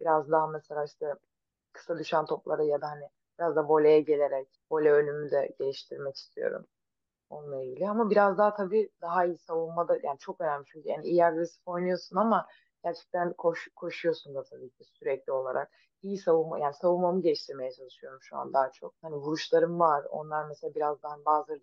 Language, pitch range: Turkish, 155-200 Hz